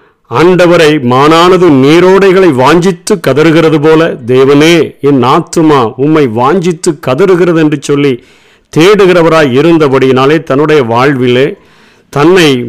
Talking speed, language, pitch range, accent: 90 wpm, Tamil, 135-165 Hz, native